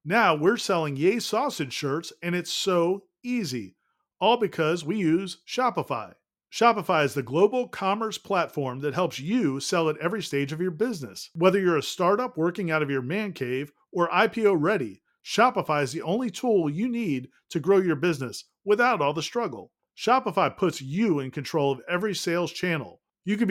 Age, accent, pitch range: 40-59, American, 155-205 Hz